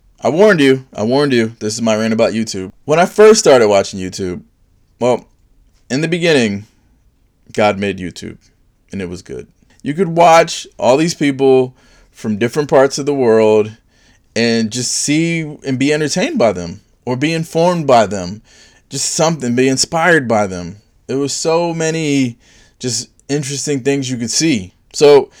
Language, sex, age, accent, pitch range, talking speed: English, male, 20-39, American, 100-140 Hz, 170 wpm